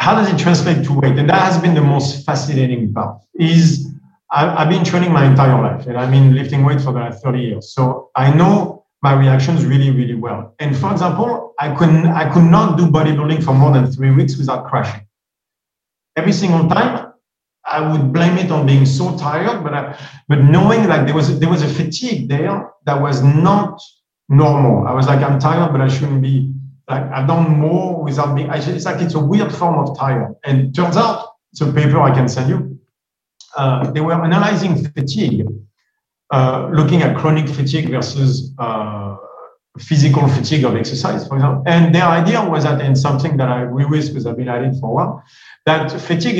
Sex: male